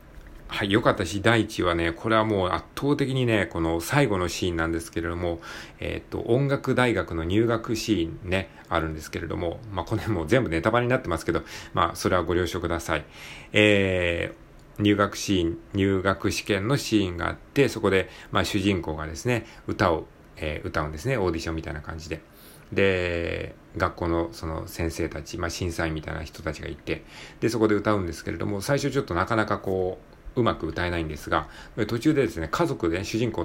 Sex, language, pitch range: male, Japanese, 85-110 Hz